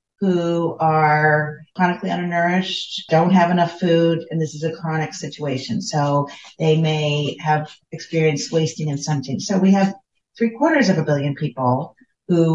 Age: 40-59